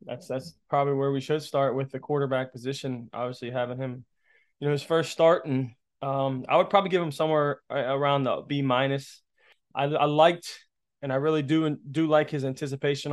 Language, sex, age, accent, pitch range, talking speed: English, male, 20-39, American, 130-145 Hz, 190 wpm